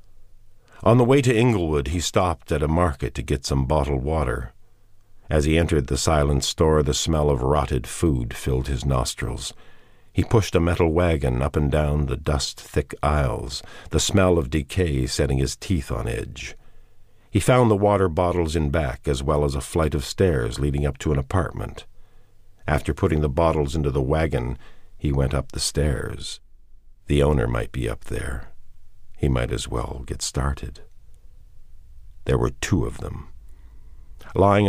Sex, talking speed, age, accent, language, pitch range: male, 170 wpm, 50-69, American, English, 70-100 Hz